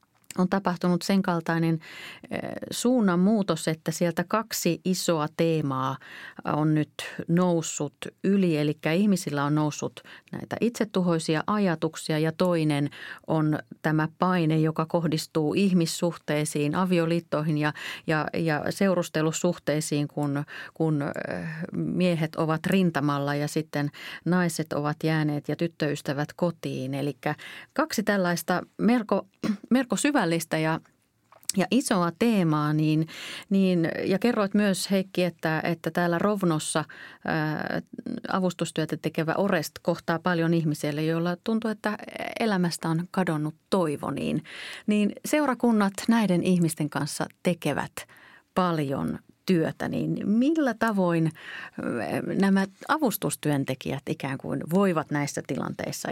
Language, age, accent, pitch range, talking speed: Finnish, 30-49, native, 155-195 Hz, 105 wpm